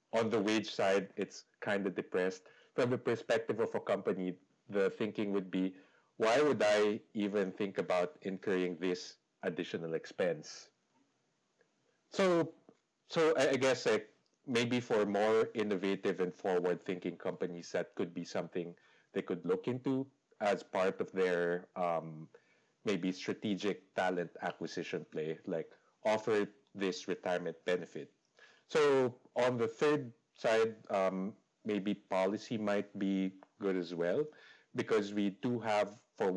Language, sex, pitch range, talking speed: English, male, 90-115 Hz, 135 wpm